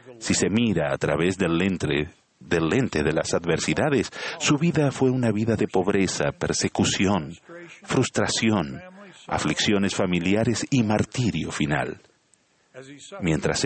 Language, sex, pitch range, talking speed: Spanish, male, 90-130 Hz, 115 wpm